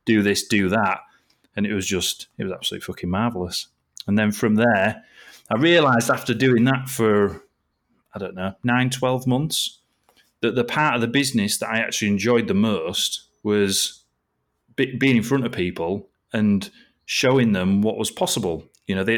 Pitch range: 100-120 Hz